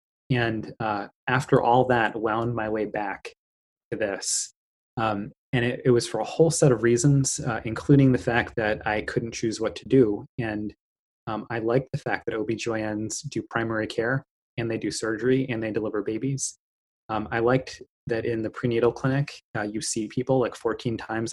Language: English